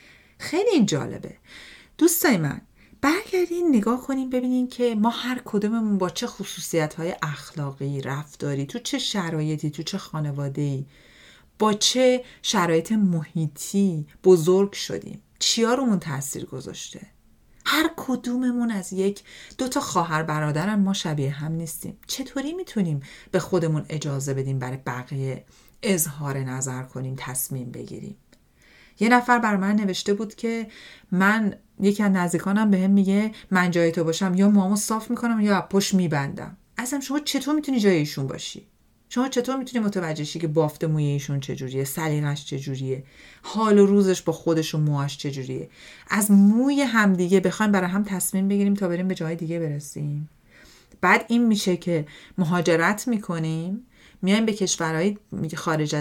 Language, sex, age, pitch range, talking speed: Persian, female, 40-59, 155-215 Hz, 140 wpm